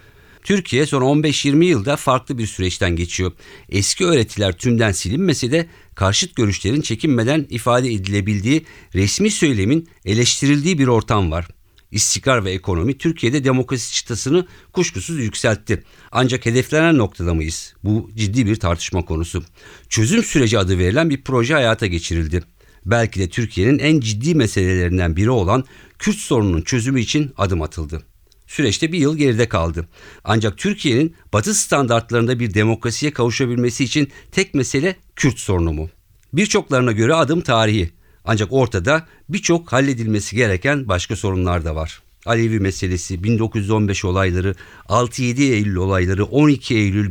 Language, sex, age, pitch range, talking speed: Turkish, male, 50-69, 95-140 Hz, 130 wpm